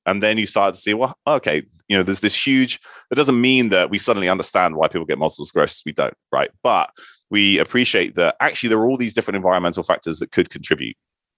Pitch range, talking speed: 85-110 Hz, 225 wpm